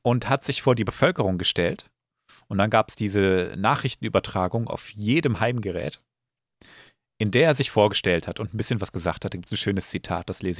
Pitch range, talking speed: 105-150 Hz, 200 wpm